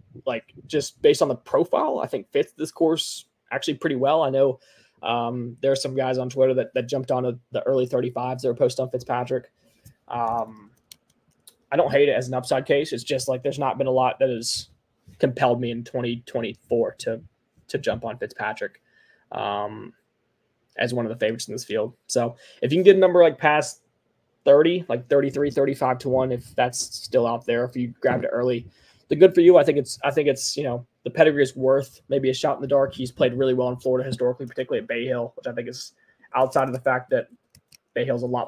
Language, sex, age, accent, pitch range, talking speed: English, male, 20-39, American, 120-135 Hz, 230 wpm